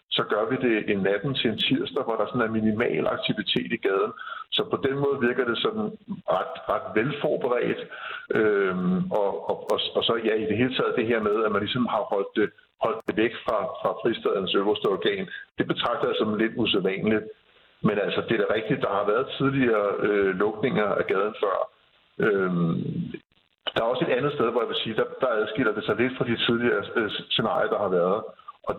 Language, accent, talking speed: Danish, native, 210 wpm